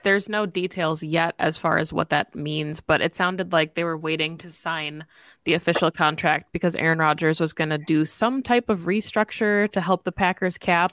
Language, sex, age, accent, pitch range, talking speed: English, female, 20-39, American, 160-190 Hz, 210 wpm